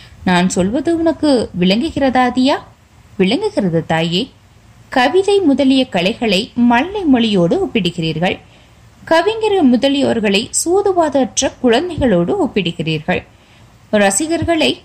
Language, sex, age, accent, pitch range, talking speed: Tamil, female, 20-39, native, 175-275 Hz, 75 wpm